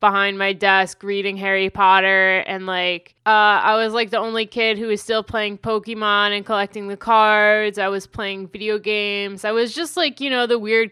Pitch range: 195-220 Hz